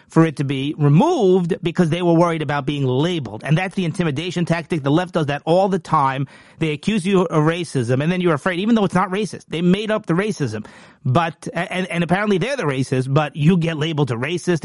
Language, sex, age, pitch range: English, male, 40-59, 145-180 Hz